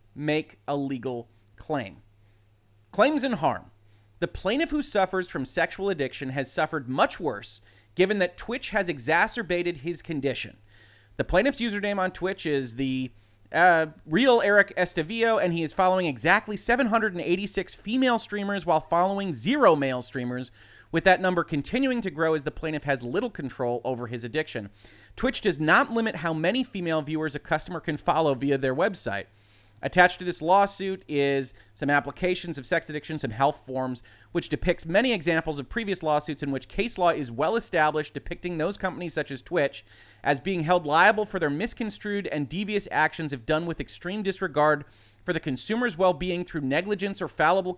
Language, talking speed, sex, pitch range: English, 170 wpm, male, 135-190 Hz